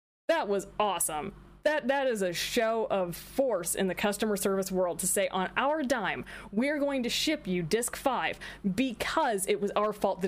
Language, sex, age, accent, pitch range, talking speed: English, female, 20-39, American, 180-225 Hz, 195 wpm